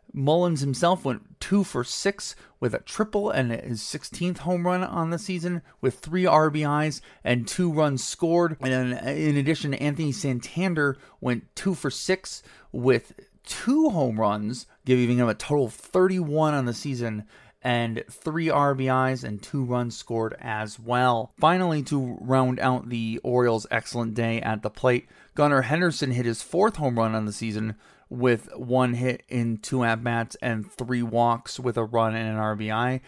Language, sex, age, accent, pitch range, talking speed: English, male, 30-49, American, 120-160 Hz, 165 wpm